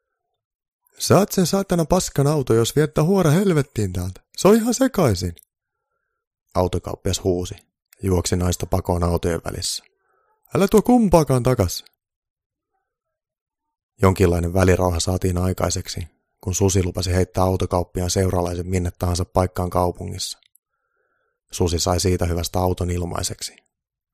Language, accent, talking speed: Finnish, native, 110 wpm